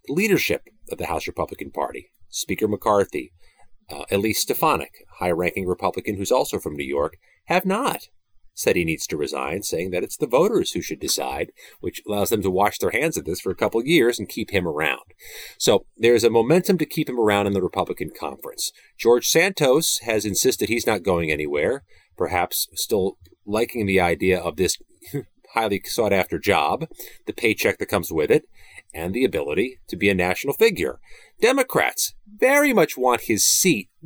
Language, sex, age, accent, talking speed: English, male, 40-59, American, 180 wpm